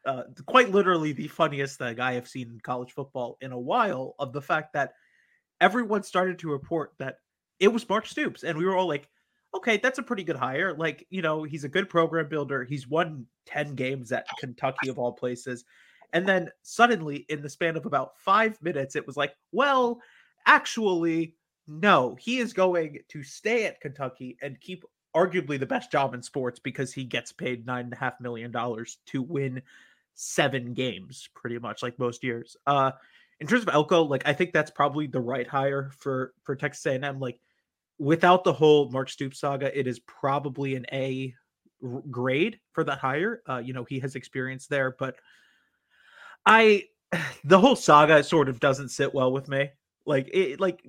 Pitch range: 130-185 Hz